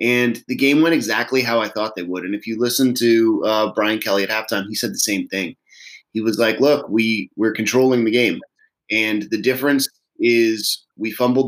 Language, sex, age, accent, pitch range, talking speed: English, male, 30-49, American, 110-145 Hz, 210 wpm